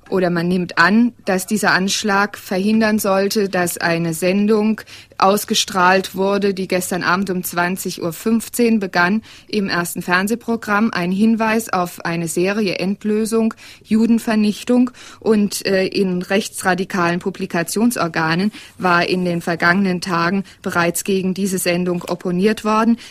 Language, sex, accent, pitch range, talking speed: German, female, German, 175-205 Hz, 120 wpm